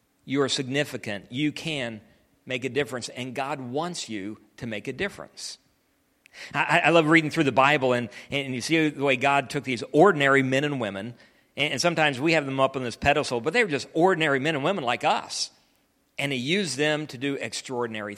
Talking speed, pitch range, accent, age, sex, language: 205 wpm, 125-150 Hz, American, 50-69, male, English